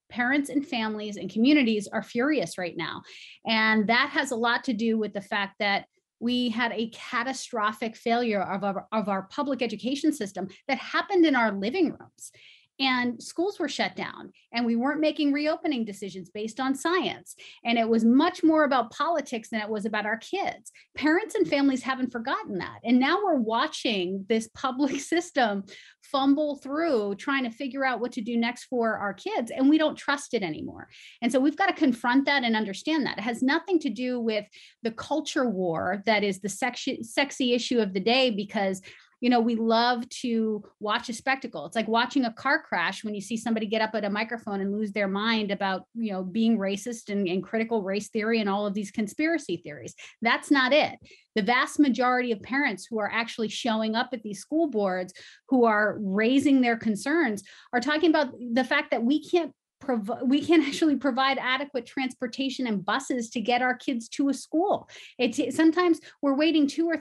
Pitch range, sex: 220-285 Hz, female